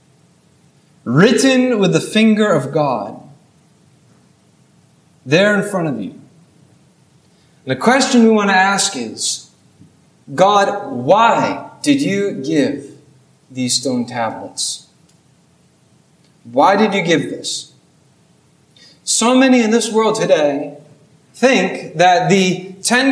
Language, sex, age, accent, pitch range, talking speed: English, male, 30-49, American, 155-220 Hz, 110 wpm